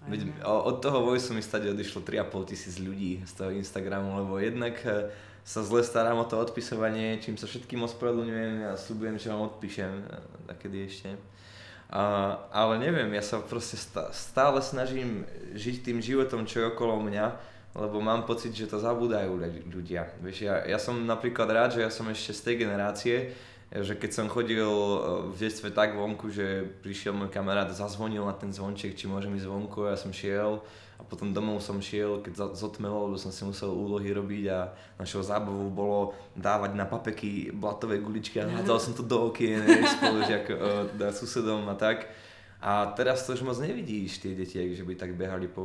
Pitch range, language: 95-110 Hz, Slovak